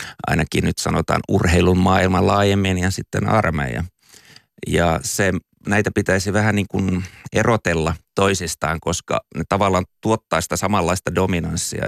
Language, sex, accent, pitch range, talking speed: Finnish, male, native, 85-100 Hz, 125 wpm